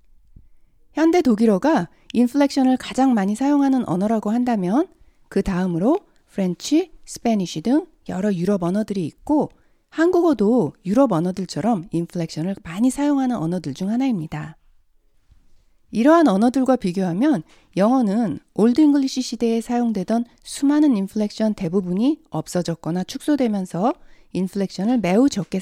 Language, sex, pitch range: Korean, female, 185-275 Hz